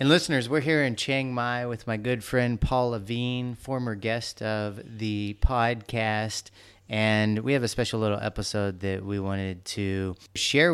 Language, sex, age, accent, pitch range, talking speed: English, male, 30-49, American, 95-110 Hz, 170 wpm